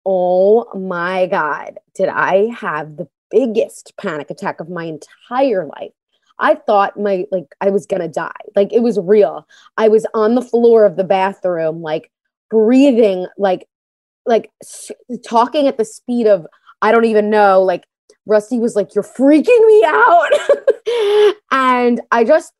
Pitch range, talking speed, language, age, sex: 200-265 Hz, 155 wpm, English, 20-39, female